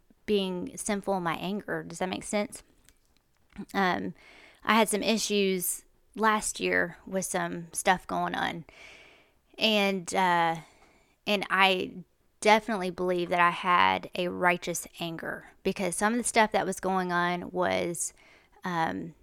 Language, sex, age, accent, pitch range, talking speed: English, female, 20-39, American, 180-230 Hz, 135 wpm